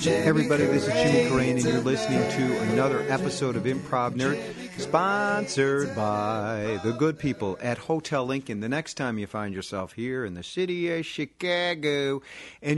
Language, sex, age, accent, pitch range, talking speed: English, male, 50-69, American, 110-150 Hz, 165 wpm